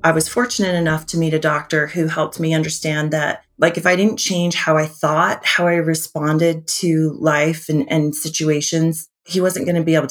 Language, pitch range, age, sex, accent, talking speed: English, 155-175 Hz, 30-49, female, American, 210 wpm